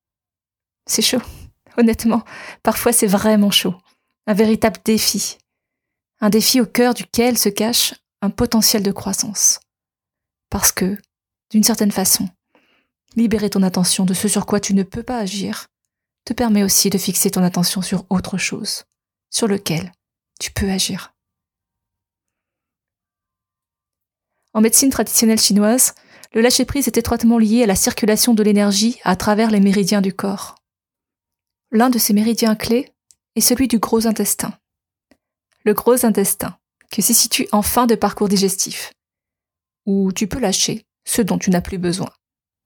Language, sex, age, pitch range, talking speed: French, female, 20-39, 195-230 Hz, 145 wpm